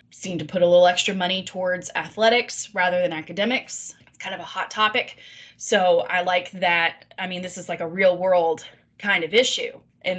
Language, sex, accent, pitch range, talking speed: English, female, American, 170-200 Hz, 200 wpm